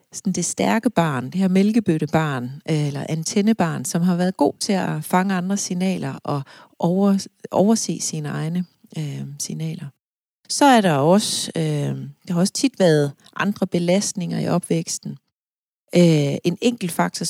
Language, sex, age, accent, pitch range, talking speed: Danish, female, 40-59, native, 160-210 Hz, 130 wpm